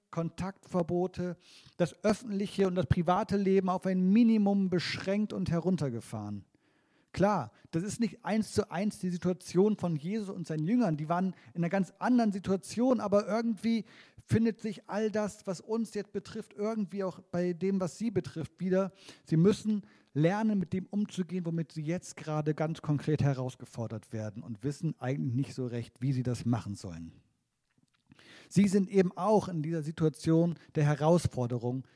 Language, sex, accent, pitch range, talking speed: German, male, German, 140-195 Hz, 160 wpm